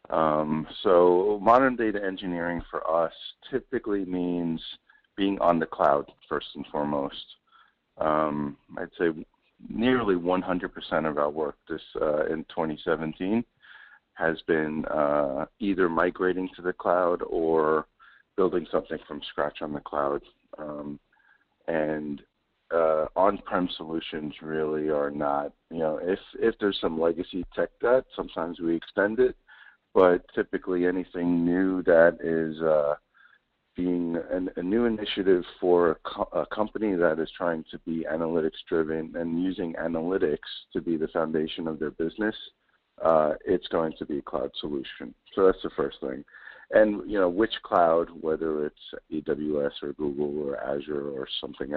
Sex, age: male, 50-69